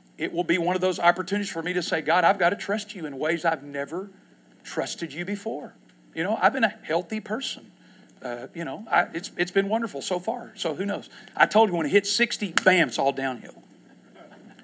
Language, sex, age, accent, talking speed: English, male, 50-69, American, 225 wpm